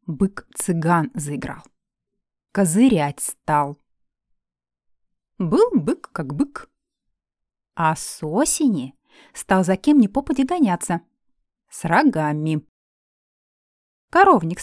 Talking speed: 80 wpm